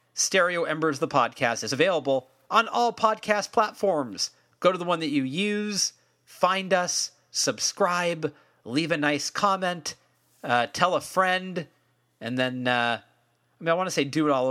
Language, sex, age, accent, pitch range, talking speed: English, male, 40-59, American, 125-175 Hz, 165 wpm